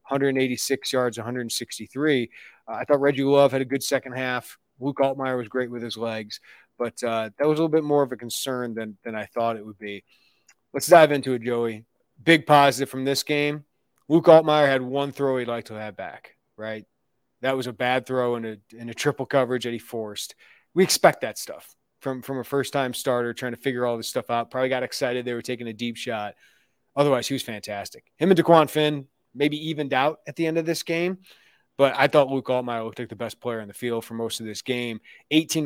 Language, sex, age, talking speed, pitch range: English, male, 30-49, 225 wpm, 120-140 Hz